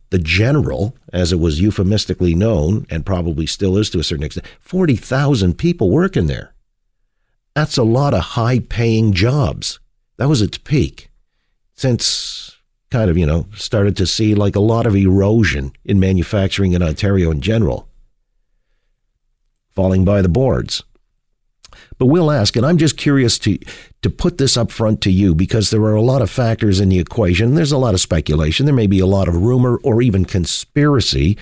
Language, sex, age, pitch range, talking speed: English, male, 50-69, 95-125 Hz, 180 wpm